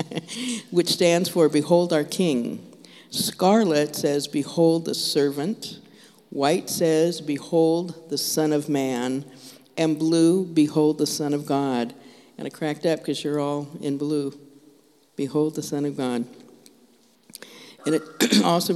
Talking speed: 135 wpm